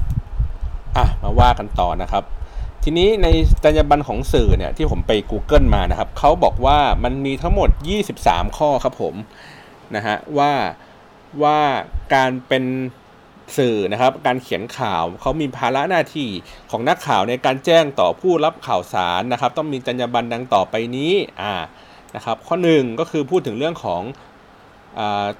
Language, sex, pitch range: Thai, male, 110-155 Hz